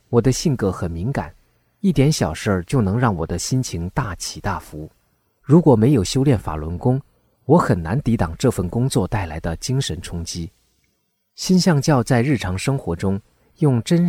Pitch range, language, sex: 90-140 Hz, Chinese, male